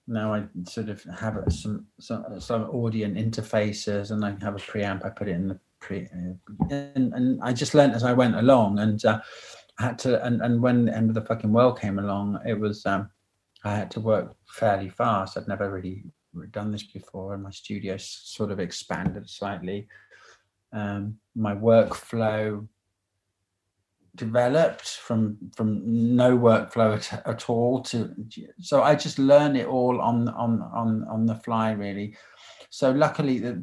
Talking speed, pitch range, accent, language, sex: 175 wpm, 105-115 Hz, British, English, male